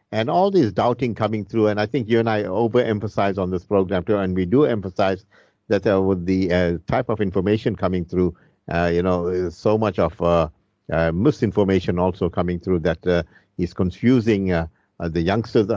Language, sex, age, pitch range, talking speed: English, male, 50-69, 90-115 Hz, 190 wpm